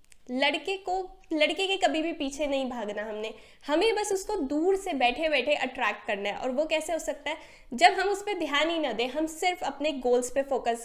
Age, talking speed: 20-39, 220 wpm